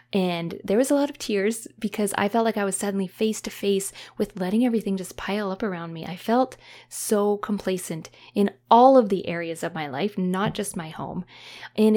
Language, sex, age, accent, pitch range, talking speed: English, female, 20-39, American, 185-225 Hz, 210 wpm